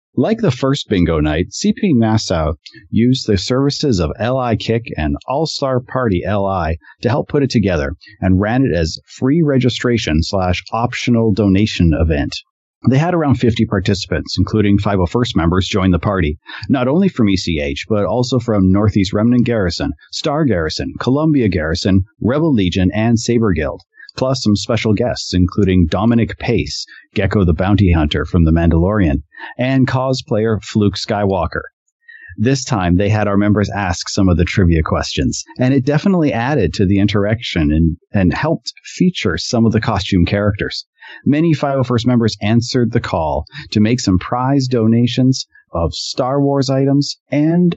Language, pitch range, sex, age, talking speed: English, 95-130 Hz, male, 40-59, 155 wpm